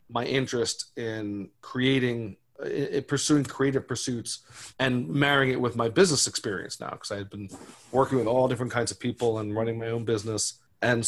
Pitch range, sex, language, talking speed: 115-140 Hz, male, English, 175 wpm